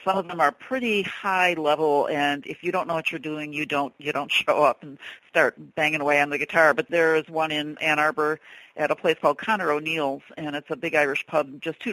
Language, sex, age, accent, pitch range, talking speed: English, female, 50-69, American, 145-160 Hz, 240 wpm